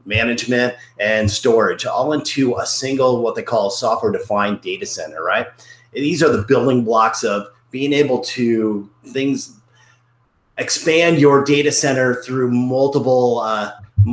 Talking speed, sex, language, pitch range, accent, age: 130 wpm, male, English, 110-140 Hz, American, 30-49